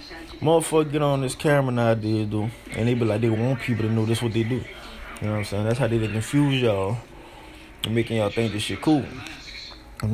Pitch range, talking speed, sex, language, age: 120-190 Hz, 245 wpm, male, English, 20-39